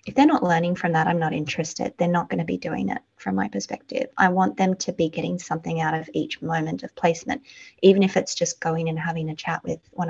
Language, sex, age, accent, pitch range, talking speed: English, female, 20-39, Australian, 160-195 Hz, 255 wpm